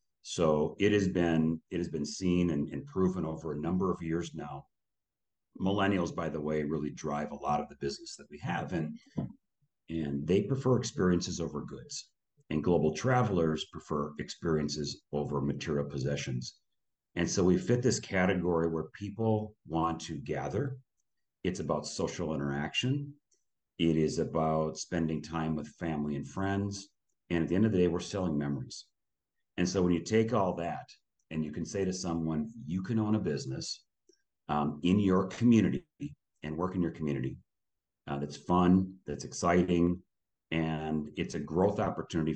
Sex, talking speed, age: male, 165 wpm, 40-59